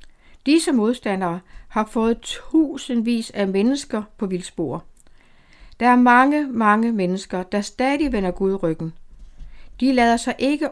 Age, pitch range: 60-79, 185-250 Hz